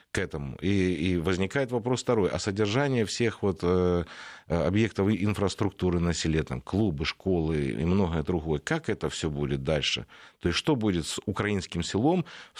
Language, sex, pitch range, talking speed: Russian, male, 90-115 Hz, 160 wpm